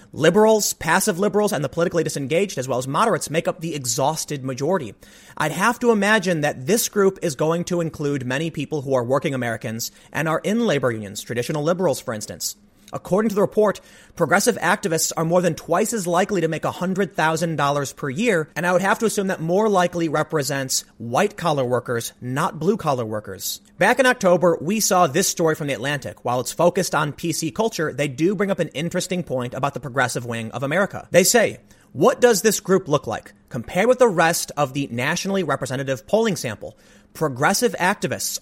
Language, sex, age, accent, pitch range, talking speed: English, male, 30-49, American, 135-185 Hz, 190 wpm